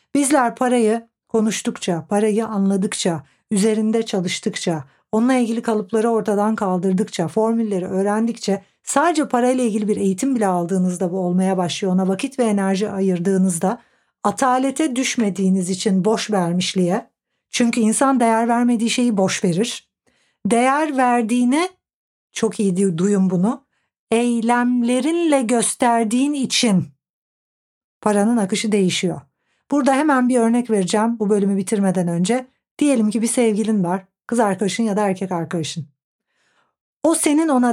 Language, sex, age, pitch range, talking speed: Turkish, female, 60-79, 195-245 Hz, 120 wpm